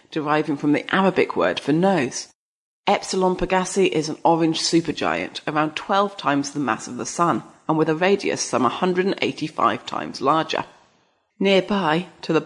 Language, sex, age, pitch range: English, female, 30-49, 150-185 Hz